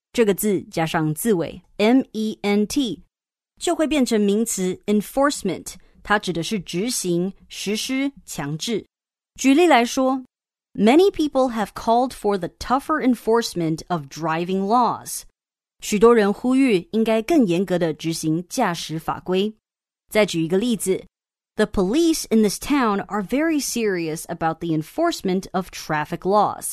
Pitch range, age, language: 175-235 Hz, 30-49, Chinese